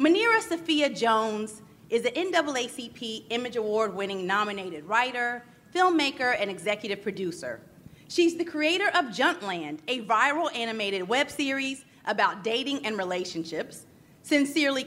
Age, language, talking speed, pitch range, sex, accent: 30-49, English, 115 wpm, 215-295 Hz, female, American